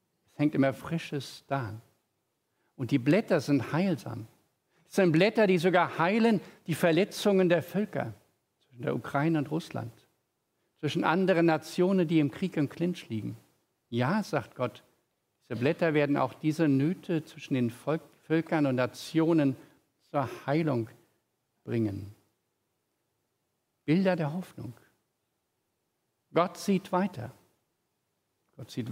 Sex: male